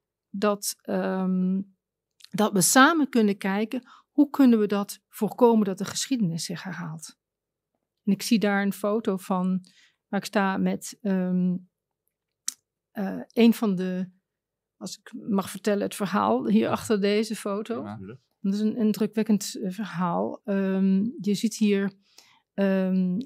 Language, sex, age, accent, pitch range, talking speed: Dutch, female, 40-59, Dutch, 190-220 Hz, 140 wpm